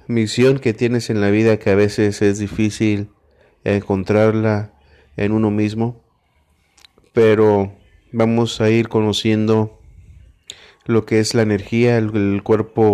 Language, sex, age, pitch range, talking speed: Spanish, male, 30-49, 105-115 Hz, 130 wpm